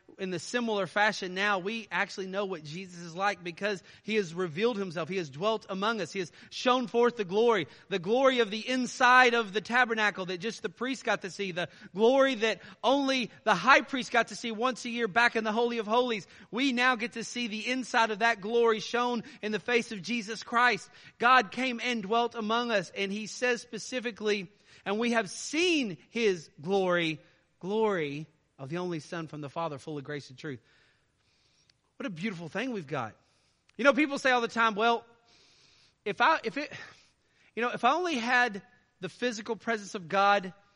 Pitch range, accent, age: 180-240 Hz, American, 30-49